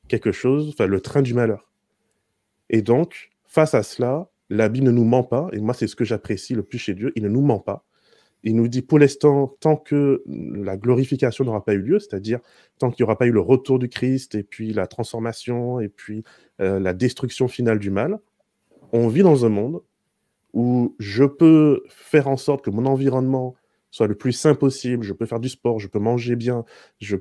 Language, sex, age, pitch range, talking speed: French, male, 20-39, 110-135 Hz, 215 wpm